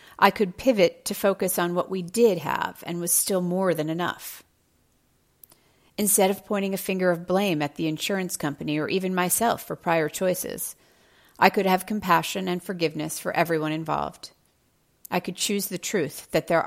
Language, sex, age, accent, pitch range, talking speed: English, female, 40-59, American, 155-195 Hz, 175 wpm